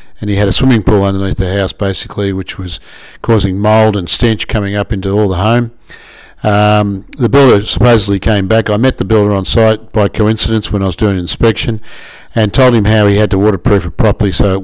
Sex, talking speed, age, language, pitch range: male, 220 wpm, 60-79, English, 100-115 Hz